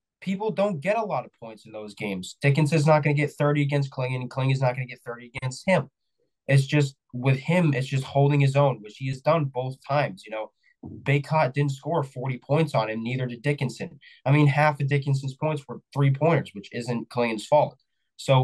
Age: 20-39